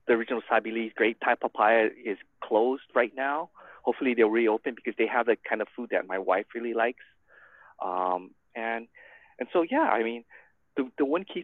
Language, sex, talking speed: English, male, 195 wpm